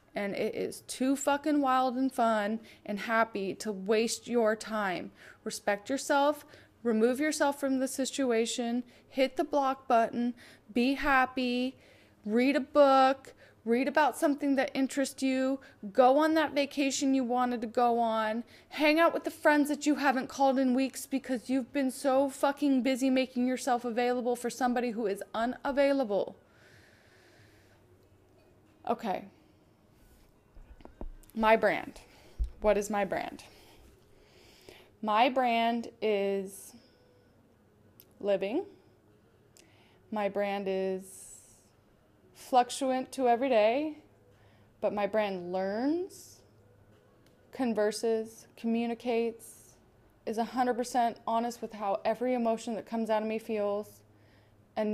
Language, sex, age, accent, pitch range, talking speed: English, female, 20-39, American, 215-265 Hz, 120 wpm